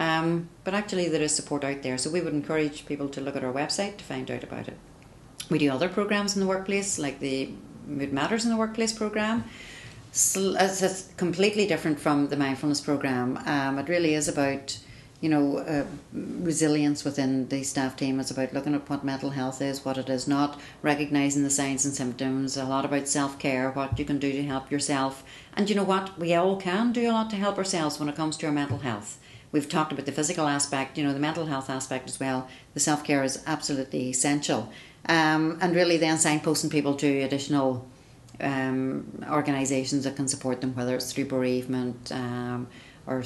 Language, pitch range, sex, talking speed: English, 135-160 Hz, female, 200 wpm